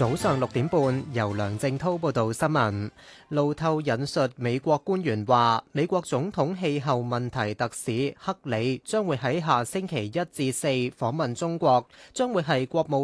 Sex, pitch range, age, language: male, 125-160 Hz, 30-49, Chinese